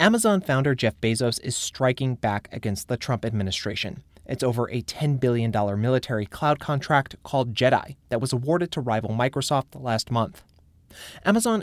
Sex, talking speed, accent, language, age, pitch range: male, 155 wpm, American, English, 30-49, 110-140 Hz